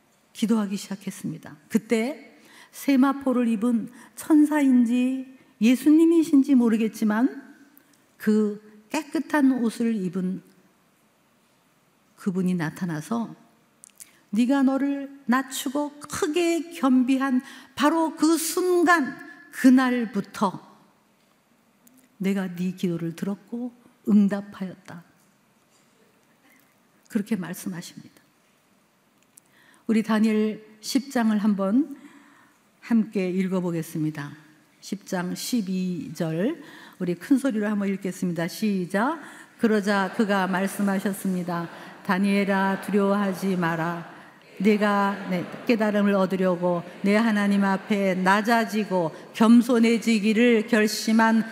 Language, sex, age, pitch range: Korean, female, 50-69, 195-255 Hz